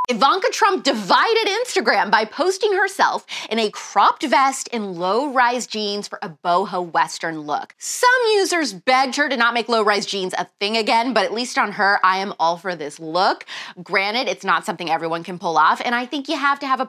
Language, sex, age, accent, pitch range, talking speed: English, female, 20-39, American, 210-305 Hz, 215 wpm